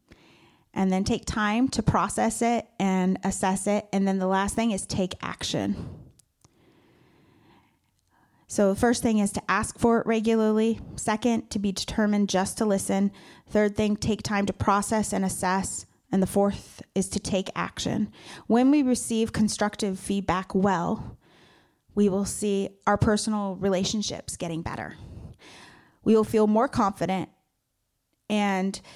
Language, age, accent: English, 30-49, American